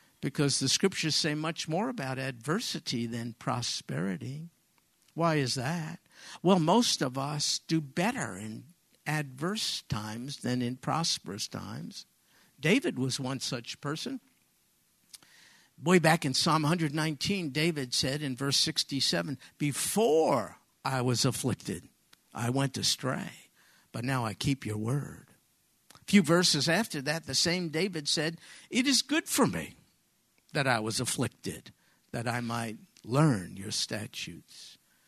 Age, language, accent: 50-69, English, American